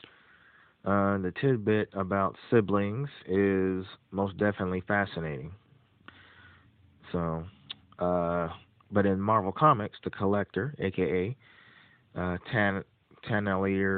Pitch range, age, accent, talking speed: 95-105 Hz, 30-49, American, 90 wpm